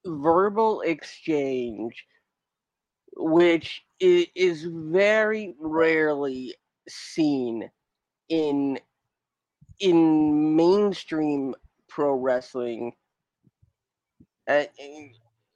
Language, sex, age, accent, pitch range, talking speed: English, male, 30-49, American, 140-195 Hz, 50 wpm